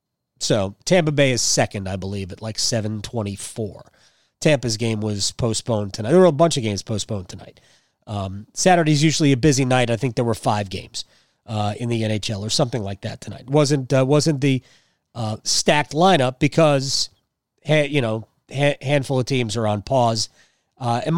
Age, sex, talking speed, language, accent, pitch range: 30-49, male, 180 wpm, English, American, 120-150 Hz